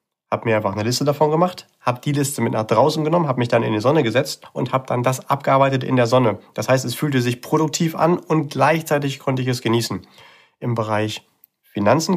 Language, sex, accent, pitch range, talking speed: German, male, German, 120-150 Hz, 220 wpm